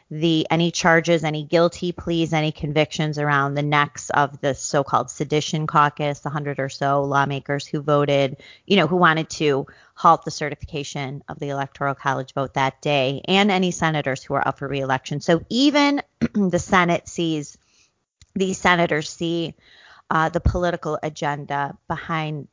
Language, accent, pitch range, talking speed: English, American, 145-175 Hz, 155 wpm